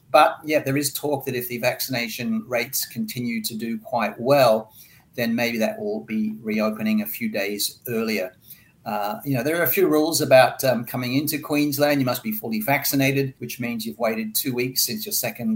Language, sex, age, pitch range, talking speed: English, male, 40-59, 115-140 Hz, 200 wpm